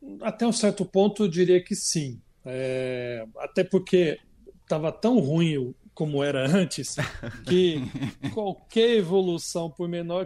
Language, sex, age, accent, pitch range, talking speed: Portuguese, male, 40-59, Brazilian, 130-170 Hz, 130 wpm